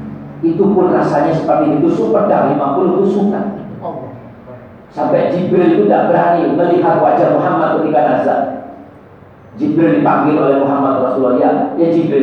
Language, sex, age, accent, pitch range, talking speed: Indonesian, male, 40-59, native, 140-220 Hz, 135 wpm